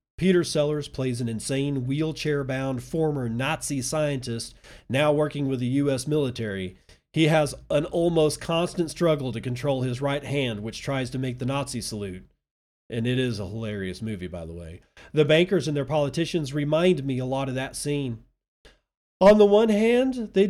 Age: 40-59